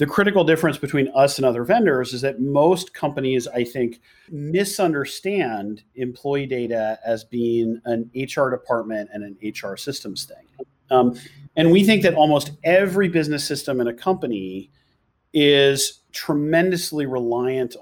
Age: 40-59